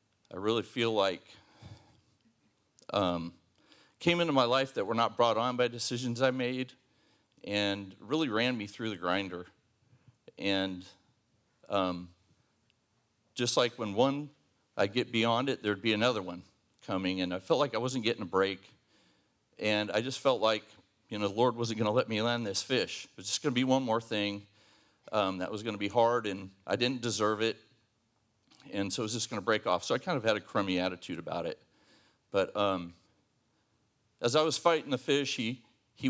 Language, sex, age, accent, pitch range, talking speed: English, male, 40-59, American, 100-120 Hz, 195 wpm